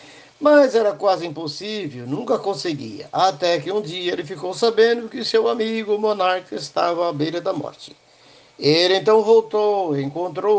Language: Portuguese